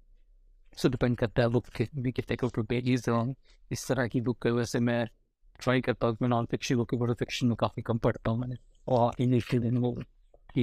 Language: Hindi